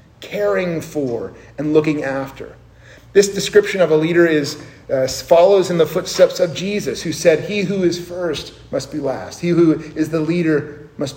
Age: 40-59